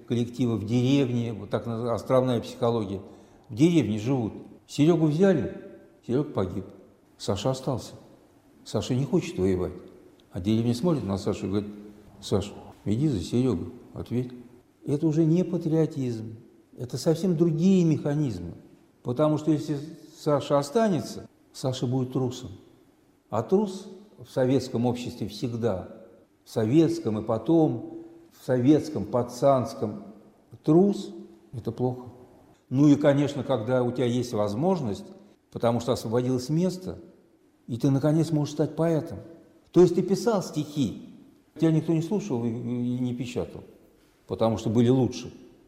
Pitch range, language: 110-155 Hz, Russian